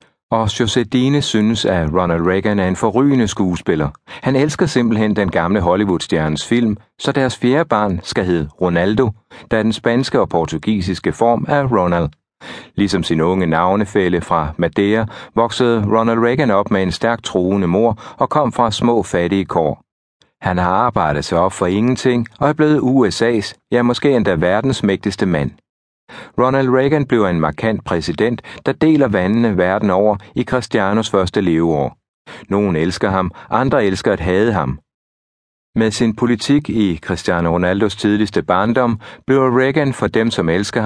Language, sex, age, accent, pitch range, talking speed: Danish, male, 60-79, native, 95-120 Hz, 160 wpm